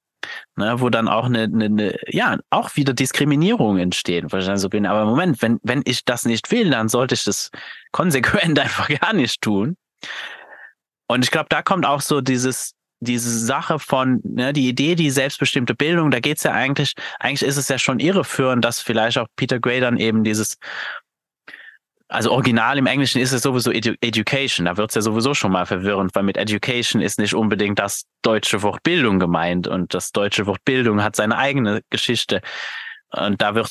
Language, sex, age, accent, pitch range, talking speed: German, male, 20-39, German, 105-135 Hz, 195 wpm